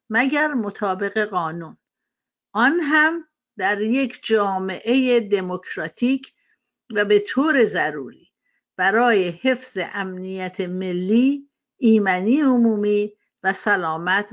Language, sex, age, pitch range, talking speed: Persian, female, 50-69, 195-260 Hz, 90 wpm